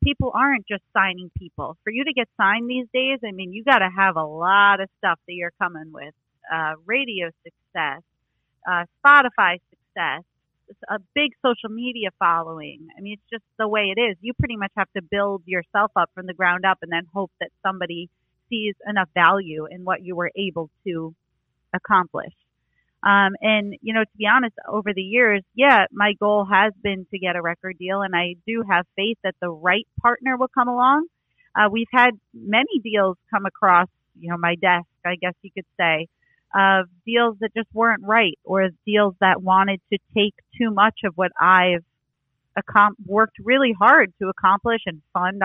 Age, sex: 30-49, female